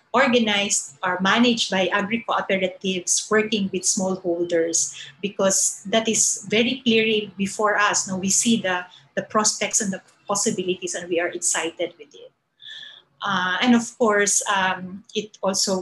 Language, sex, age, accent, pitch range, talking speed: English, female, 30-49, Filipino, 180-220 Hz, 140 wpm